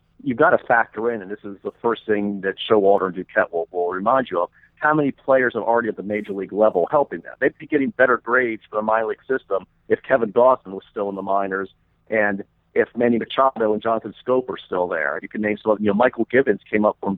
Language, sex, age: English, male, 50-69